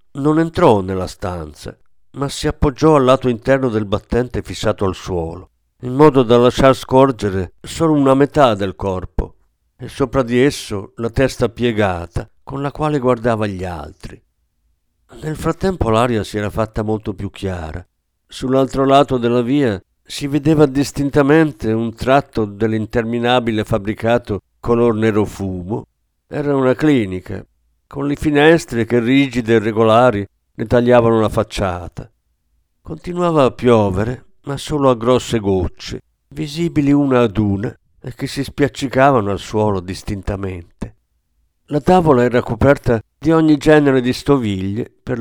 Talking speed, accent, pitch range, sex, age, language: 140 wpm, native, 100-140 Hz, male, 50-69, Italian